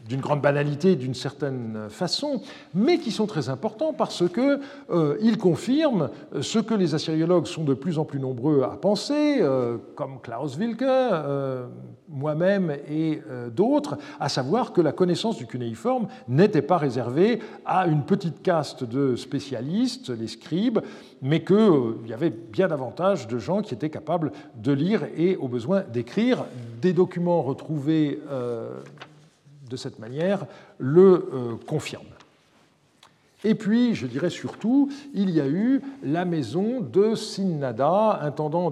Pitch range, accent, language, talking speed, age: 135-195 Hz, French, French, 150 wpm, 50-69